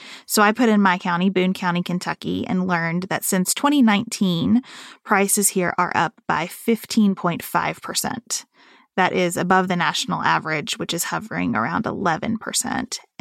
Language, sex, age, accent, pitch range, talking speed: English, female, 30-49, American, 170-210 Hz, 140 wpm